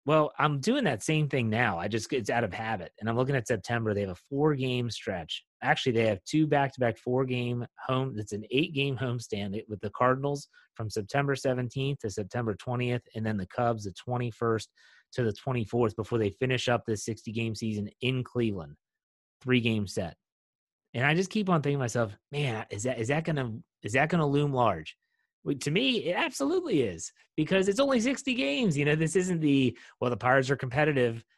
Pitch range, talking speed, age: 115-145 Hz, 195 wpm, 30-49